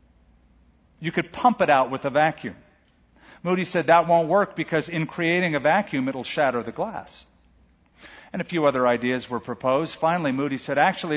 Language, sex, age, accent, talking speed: English, male, 50-69, American, 175 wpm